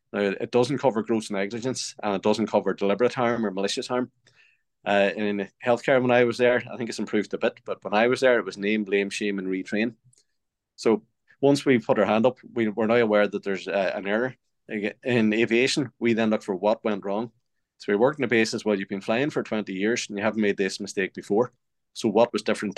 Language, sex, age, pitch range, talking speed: English, male, 20-39, 100-120 Hz, 235 wpm